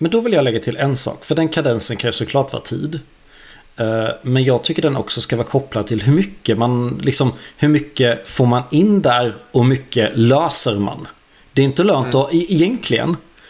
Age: 30-49